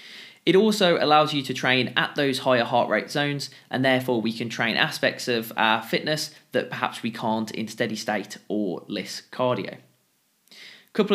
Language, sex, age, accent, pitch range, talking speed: English, male, 20-39, British, 115-155 Hz, 180 wpm